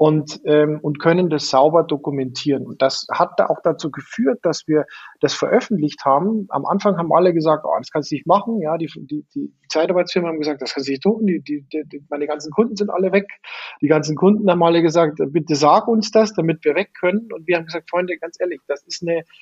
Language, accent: German, German